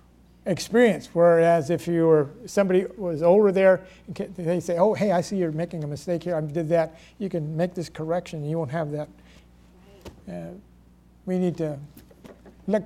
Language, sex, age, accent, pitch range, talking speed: English, male, 60-79, American, 125-180 Hz, 175 wpm